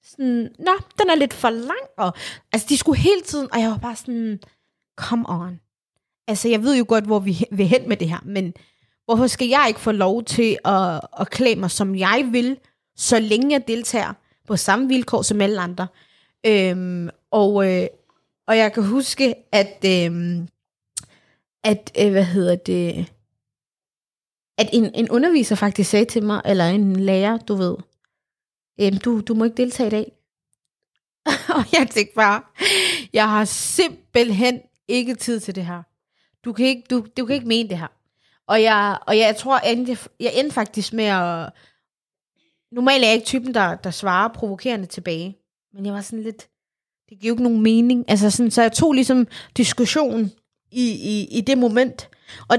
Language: Danish